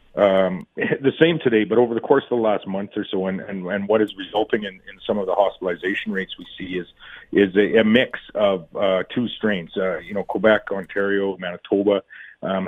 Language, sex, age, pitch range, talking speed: English, male, 40-59, 95-105 Hz, 215 wpm